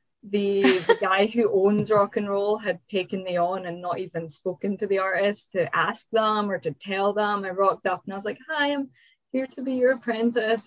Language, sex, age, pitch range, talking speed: English, female, 10-29, 170-205 Hz, 225 wpm